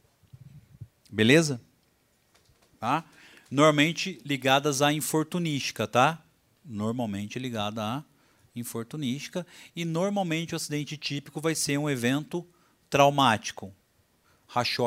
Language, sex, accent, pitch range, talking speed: Portuguese, male, Brazilian, 115-165 Hz, 90 wpm